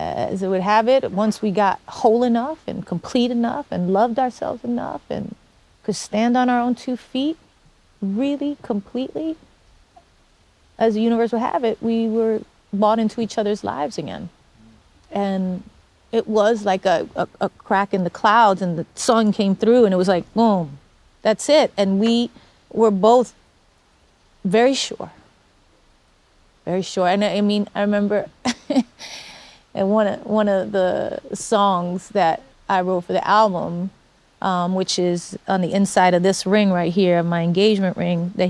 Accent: American